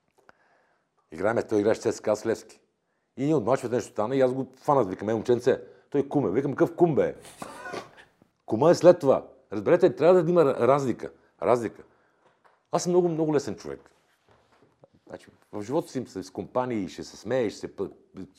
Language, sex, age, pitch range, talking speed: Bulgarian, male, 50-69, 100-145 Hz, 175 wpm